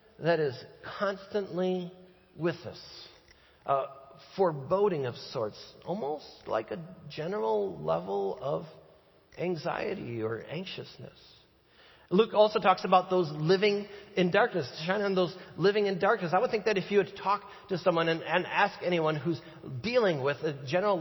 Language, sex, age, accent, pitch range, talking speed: English, male, 40-59, American, 165-200 Hz, 150 wpm